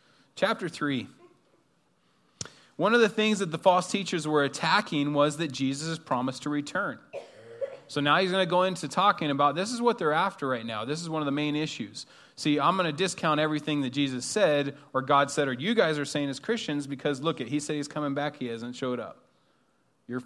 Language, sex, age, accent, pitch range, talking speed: English, male, 30-49, American, 125-150 Hz, 220 wpm